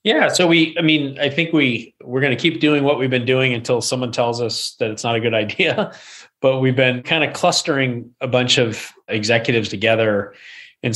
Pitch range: 105-125 Hz